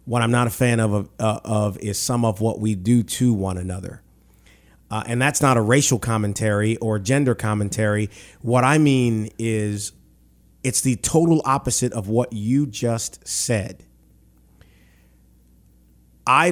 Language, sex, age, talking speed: English, male, 30-49, 150 wpm